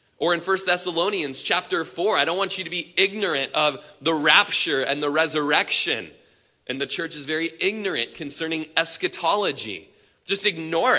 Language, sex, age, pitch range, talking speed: English, male, 20-39, 145-200 Hz, 160 wpm